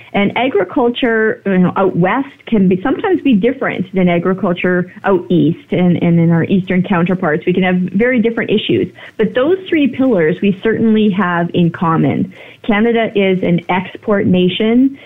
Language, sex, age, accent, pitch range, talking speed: English, female, 30-49, American, 175-220 Hz, 150 wpm